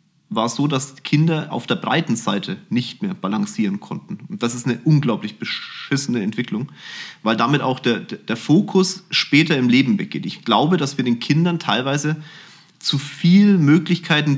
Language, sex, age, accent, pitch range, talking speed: German, male, 30-49, German, 125-175 Hz, 165 wpm